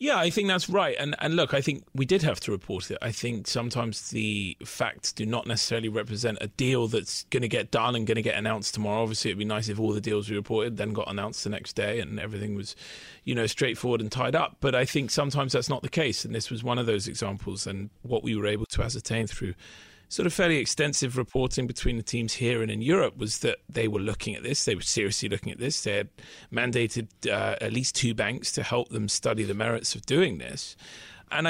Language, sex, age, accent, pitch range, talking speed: English, male, 30-49, British, 105-135 Hz, 245 wpm